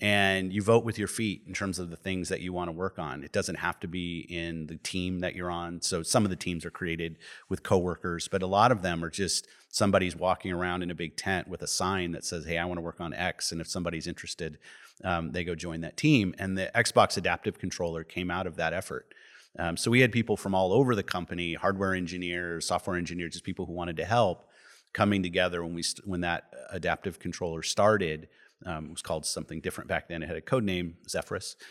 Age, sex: 30-49, male